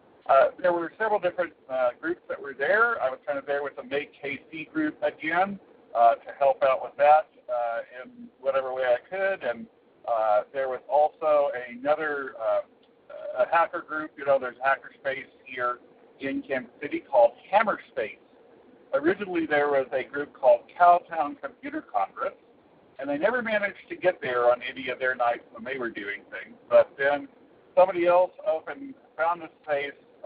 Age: 50-69